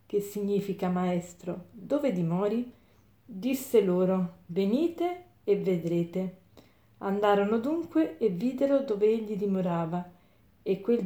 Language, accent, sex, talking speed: Italian, native, female, 105 wpm